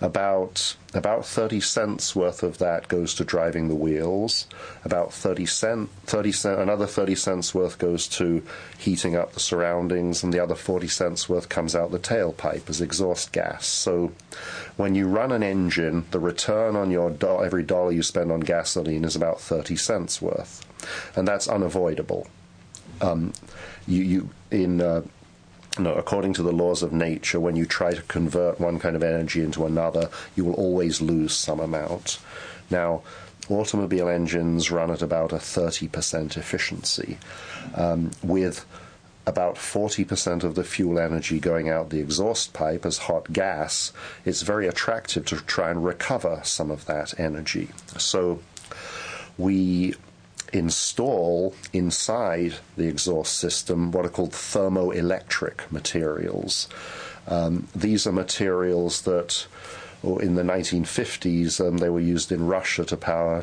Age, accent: 40-59, British